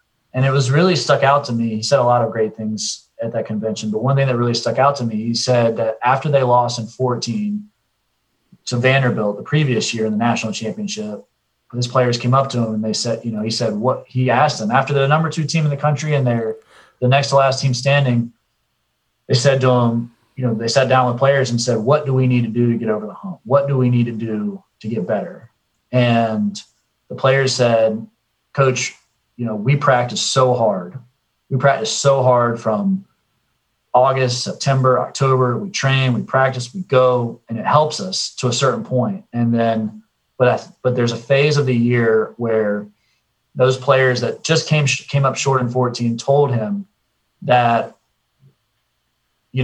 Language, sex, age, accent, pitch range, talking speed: English, male, 30-49, American, 115-135 Hz, 205 wpm